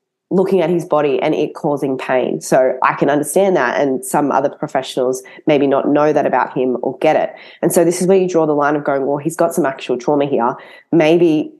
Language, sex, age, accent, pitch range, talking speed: English, female, 20-39, Australian, 140-185 Hz, 235 wpm